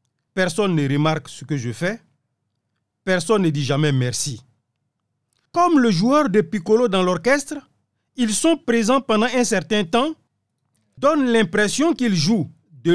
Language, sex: French, male